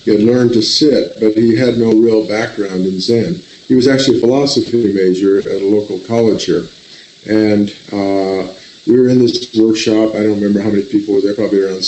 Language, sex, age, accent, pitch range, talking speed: English, male, 50-69, American, 105-125 Hz, 205 wpm